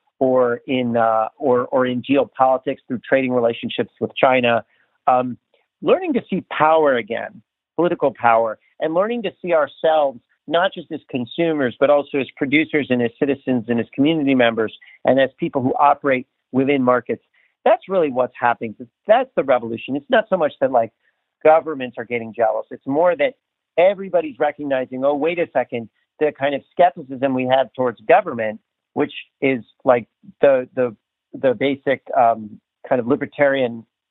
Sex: male